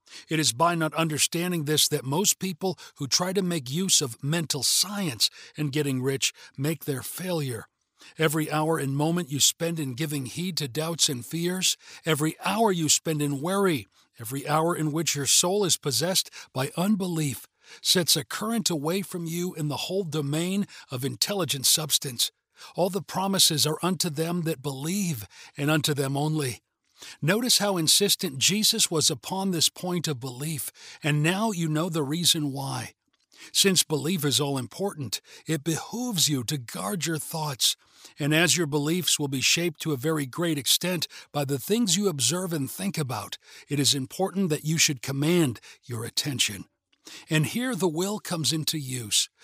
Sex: male